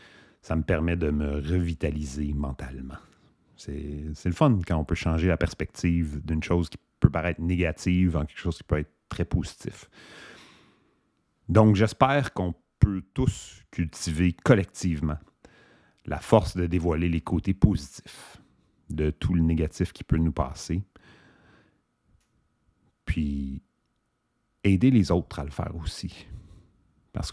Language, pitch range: English, 80-100 Hz